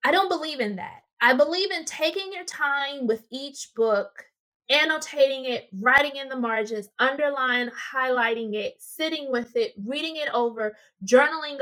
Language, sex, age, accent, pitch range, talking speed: English, female, 20-39, American, 230-290 Hz, 155 wpm